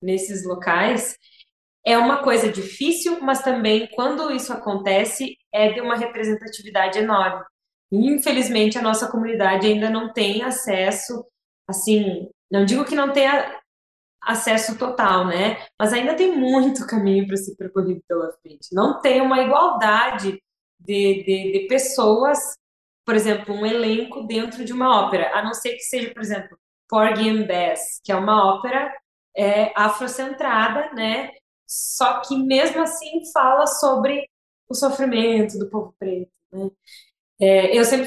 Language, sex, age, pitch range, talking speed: Portuguese, female, 20-39, 200-260 Hz, 140 wpm